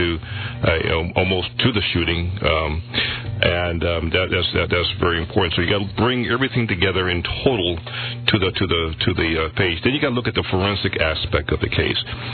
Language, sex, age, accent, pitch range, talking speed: English, male, 50-69, American, 90-110 Hz, 225 wpm